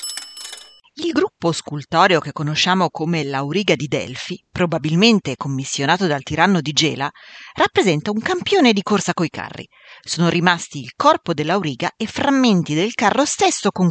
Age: 40-59